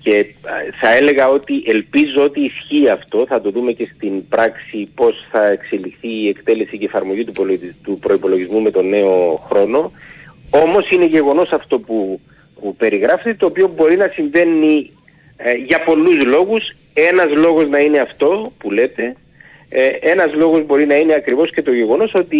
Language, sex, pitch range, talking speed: Greek, male, 125-170 Hz, 165 wpm